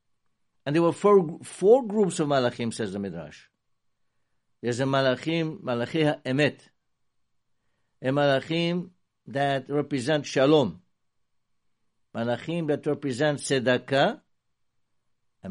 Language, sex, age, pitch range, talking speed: English, male, 60-79, 120-165 Hz, 100 wpm